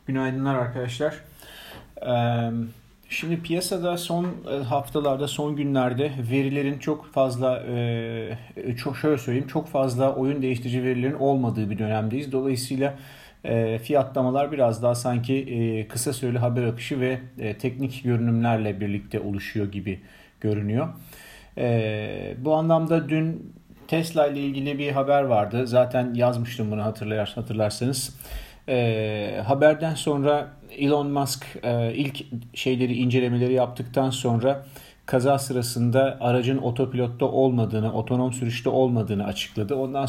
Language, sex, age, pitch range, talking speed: Turkish, male, 40-59, 115-140 Hz, 110 wpm